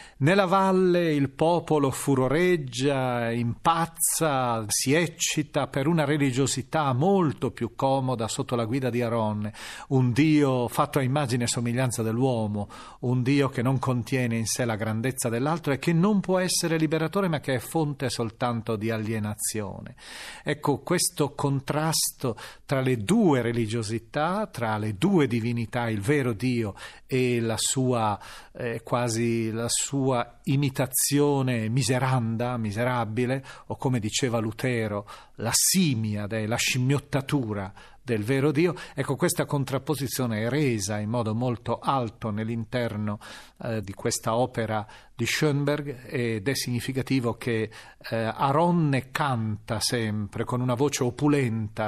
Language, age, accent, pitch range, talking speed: Italian, 40-59, native, 115-145 Hz, 130 wpm